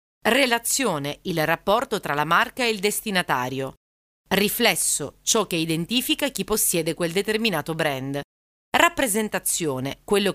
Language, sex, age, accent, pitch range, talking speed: Italian, female, 30-49, native, 160-215 Hz, 115 wpm